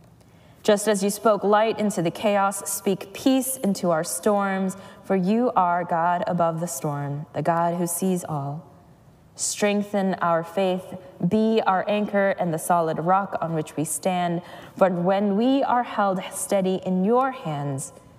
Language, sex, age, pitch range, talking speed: English, female, 20-39, 160-205 Hz, 160 wpm